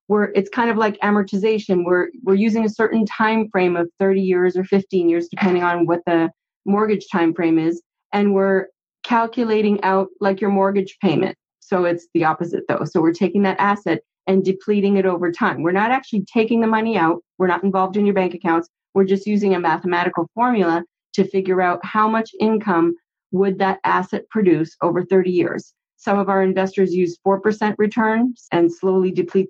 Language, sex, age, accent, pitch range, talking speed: English, female, 30-49, American, 175-210 Hz, 185 wpm